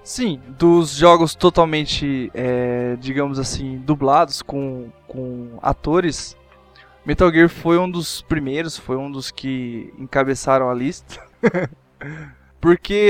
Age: 20-39